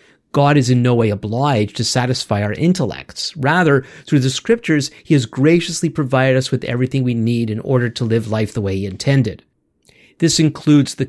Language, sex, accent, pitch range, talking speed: English, male, American, 115-155 Hz, 190 wpm